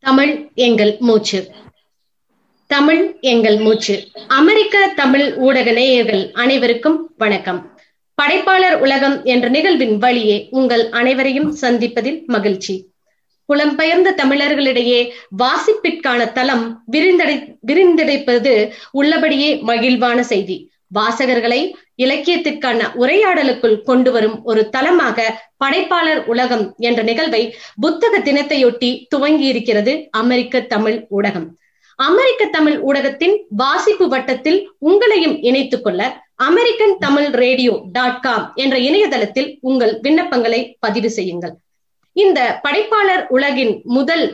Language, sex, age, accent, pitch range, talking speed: Tamil, female, 20-39, native, 235-310 Hz, 95 wpm